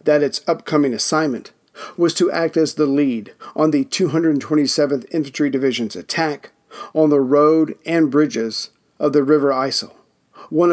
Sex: male